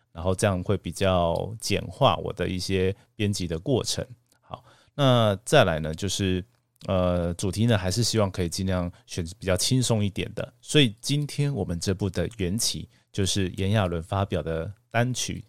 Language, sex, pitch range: Chinese, male, 90-115 Hz